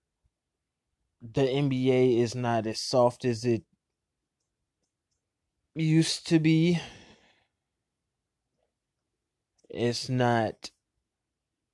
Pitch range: 110-135 Hz